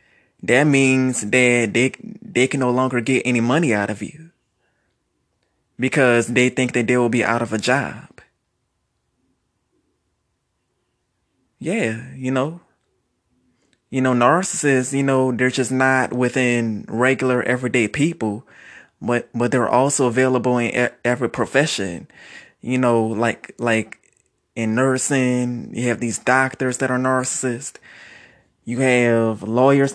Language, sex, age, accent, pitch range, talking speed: English, male, 20-39, American, 115-130 Hz, 130 wpm